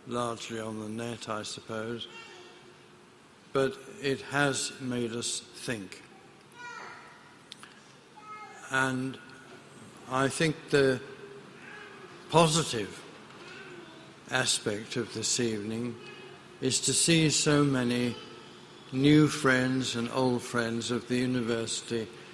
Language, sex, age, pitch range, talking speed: English, male, 60-79, 115-130 Hz, 90 wpm